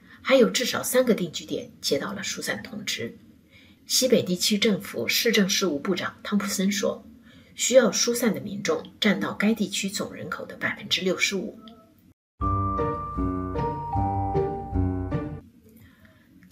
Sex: female